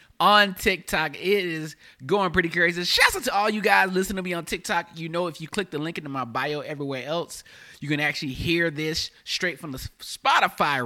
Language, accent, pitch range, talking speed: English, American, 140-190 Hz, 215 wpm